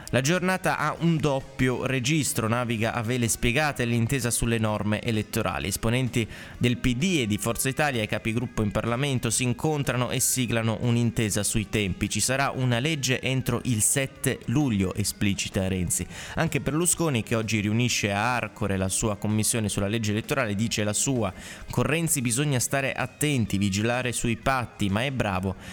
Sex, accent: male, native